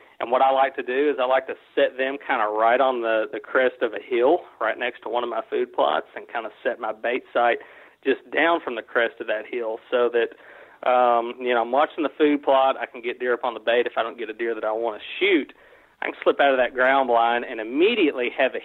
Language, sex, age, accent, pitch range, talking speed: English, male, 30-49, American, 115-140 Hz, 275 wpm